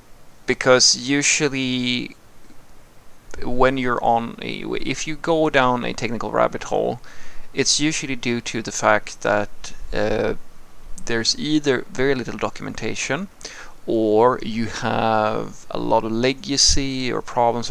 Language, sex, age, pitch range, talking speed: English, male, 20-39, 110-135 Hz, 120 wpm